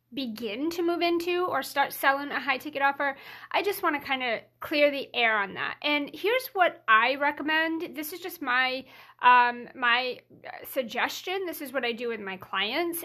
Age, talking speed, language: 30-49, 195 wpm, English